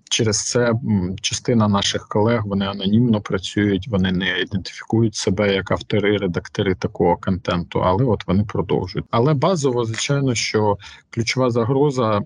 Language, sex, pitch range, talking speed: Ukrainian, male, 100-115 Hz, 130 wpm